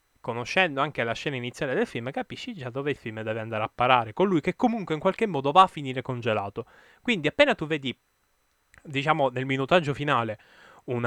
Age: 10-29